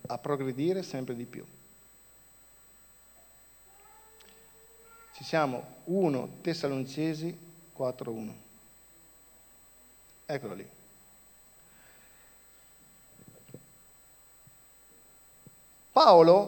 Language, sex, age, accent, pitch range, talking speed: Italian, male, 50-69, native, 125-160 Hz, 50 wpm